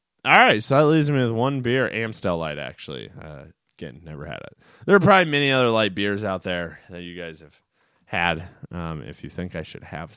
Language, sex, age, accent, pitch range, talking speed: English, male, 20-39, American, 85-110 Hz, 220 wpm